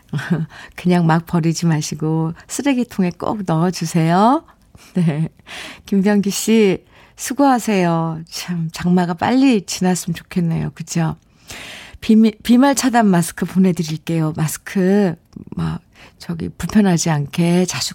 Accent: native